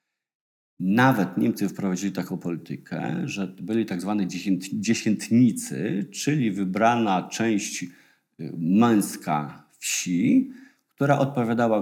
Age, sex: 50-69, male